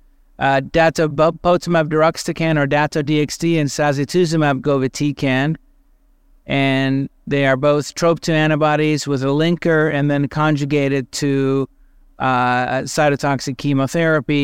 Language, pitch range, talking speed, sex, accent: English, 135-160 Hz, 110 wpm, male, American